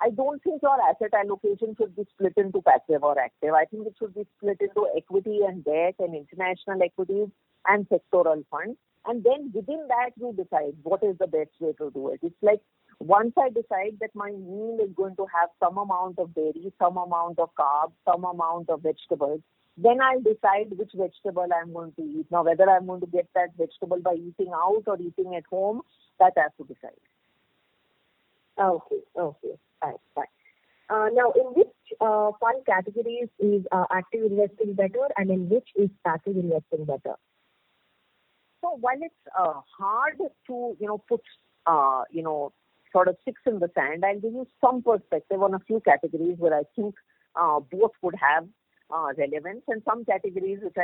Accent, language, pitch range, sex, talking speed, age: Indian, English, 175-225 Hz, female, 185 wpm, 50-69